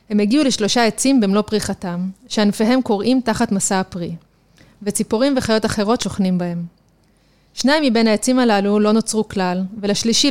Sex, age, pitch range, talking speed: female, 30-49, 195-235 Hz, 140 wpm